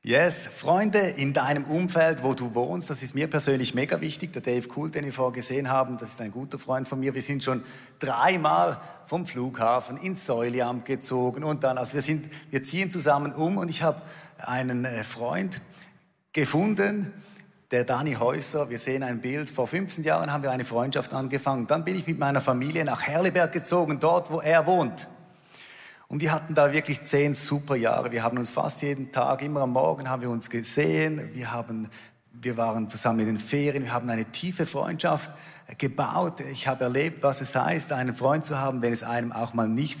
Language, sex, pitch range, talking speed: German, male, 125-165 Hz, 200 wpm